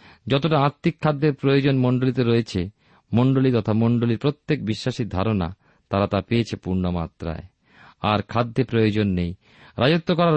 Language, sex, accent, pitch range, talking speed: Bengali, male, native, 105-140 Hz, 125 wpm